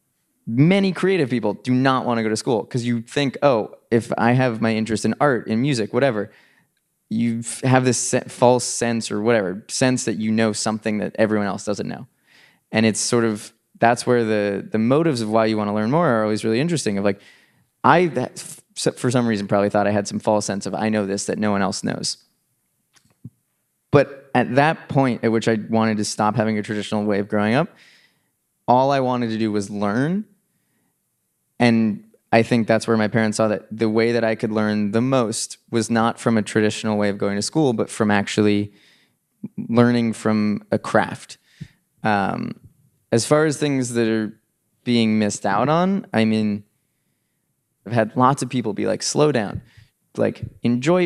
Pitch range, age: 105-125 Hz, 20-39